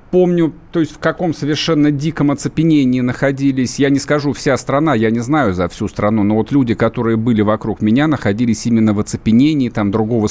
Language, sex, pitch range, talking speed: Russian, male, 110-140 Hz, 190 wpm